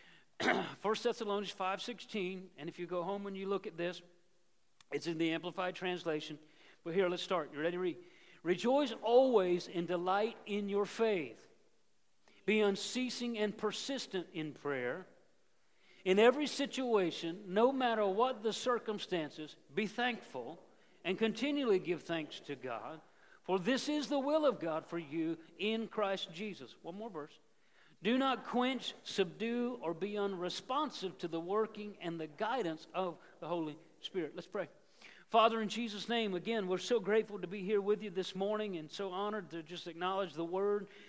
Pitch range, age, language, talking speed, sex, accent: 175-220 Hz, 50-69, English, 165 wpm, male, American